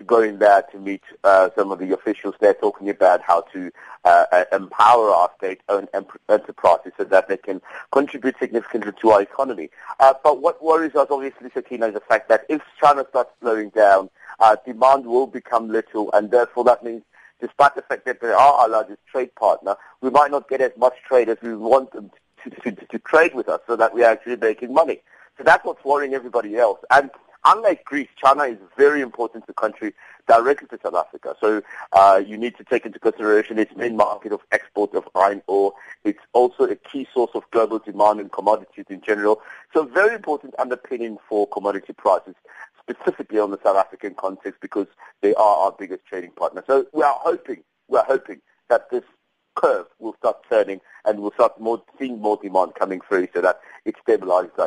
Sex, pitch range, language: male, 105-135 Hz, English